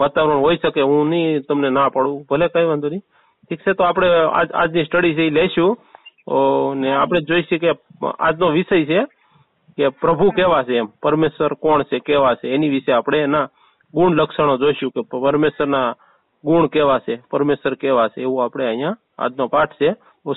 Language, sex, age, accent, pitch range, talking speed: Gujarati, male, 40-59, native, 140-165 Hz, 155 wpm